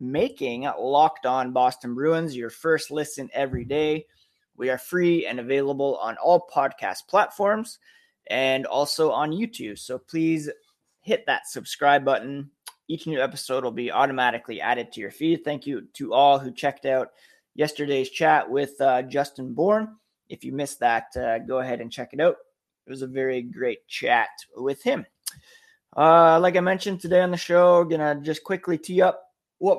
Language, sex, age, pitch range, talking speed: English, male, 20-39, 130-175 Hz, 175 wpm